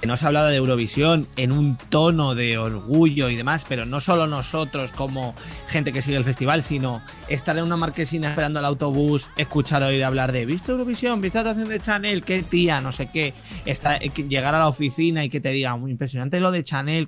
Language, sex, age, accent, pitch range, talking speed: Spanish, male, 20-39, Spanish, 135-180 Hz, 215 wpm